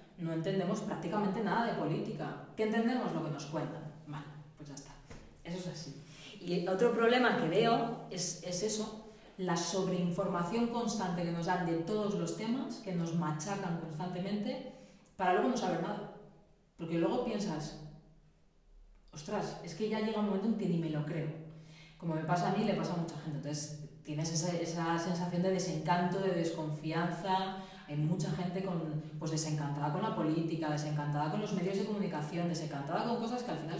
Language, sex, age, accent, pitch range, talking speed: Spanish, female, 30-49, Spanish, 160-205 Hz, 180 wpm